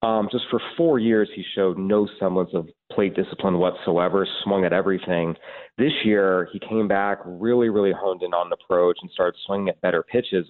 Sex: male